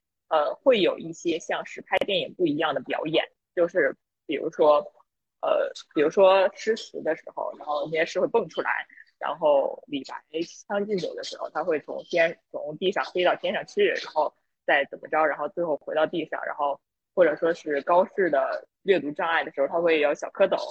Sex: female